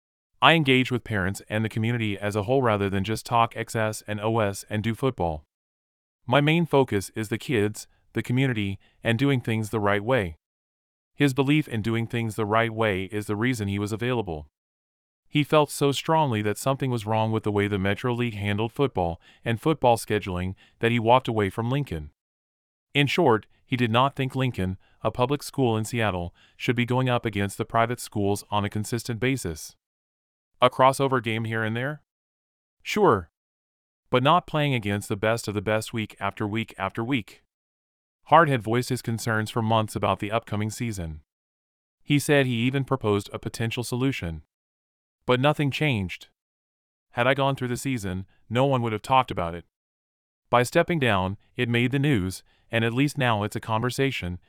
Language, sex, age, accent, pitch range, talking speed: English, male, 30-49, American, 90-125 Hz, 185 wpm